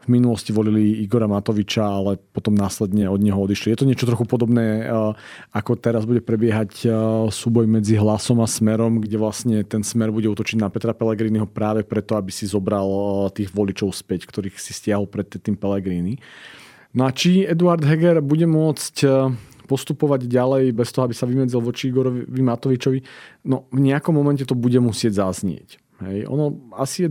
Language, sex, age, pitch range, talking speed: Slovak, male, 40-59, 110-130 Hz, 170 wpm